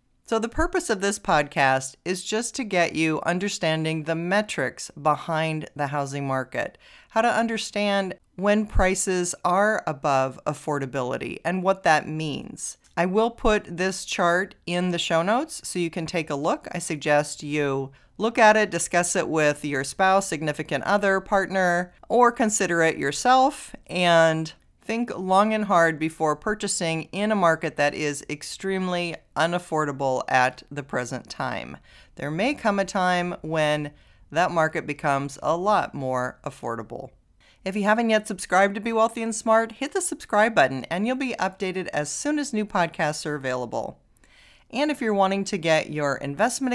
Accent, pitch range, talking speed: American, 150-210 Hz, 165 wpm